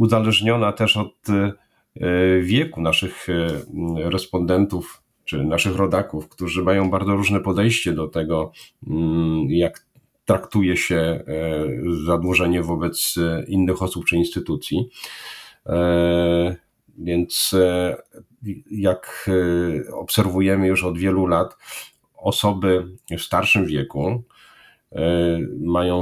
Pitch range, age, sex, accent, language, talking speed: 85-95 Hz, 40-59, male, native, Polish, 85 wpm